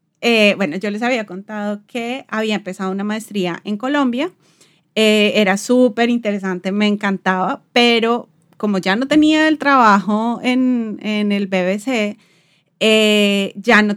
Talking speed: 140 wpm